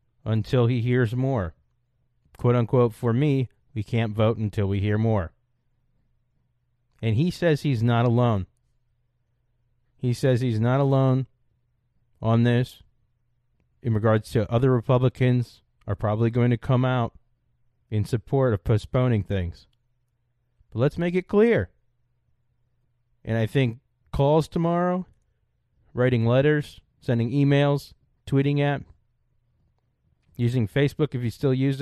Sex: male